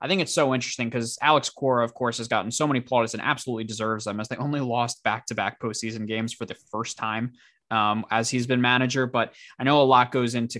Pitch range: 110-130 Hz